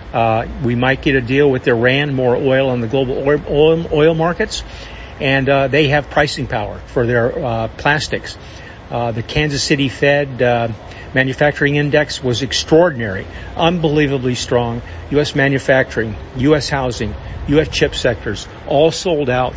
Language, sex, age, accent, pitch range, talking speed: English, male, 50-69, American, 120-140 Hz, 150 wpm